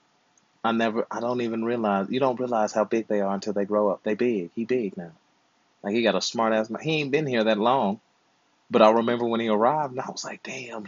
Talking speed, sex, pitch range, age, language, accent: 250 wpm, male, 100-120 Hz, 30-49, English, American